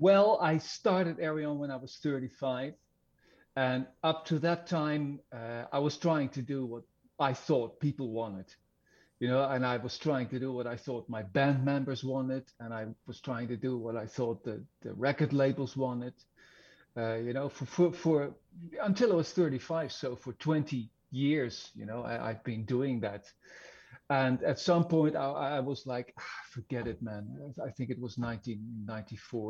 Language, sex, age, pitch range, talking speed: English, male, 50-69, 120-145 Hz, 185 wpm